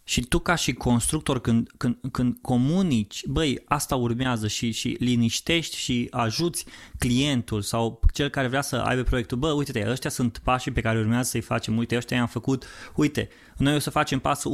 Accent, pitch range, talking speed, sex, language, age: native, 125-175 Hz, 185 wpm, male, Romanian, 20-39